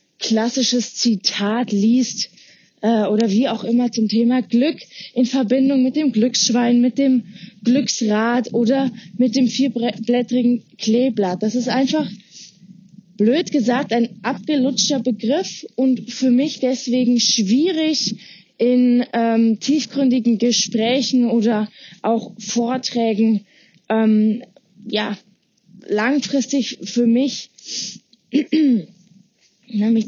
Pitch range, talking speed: 205-245 Hz, 100 wpm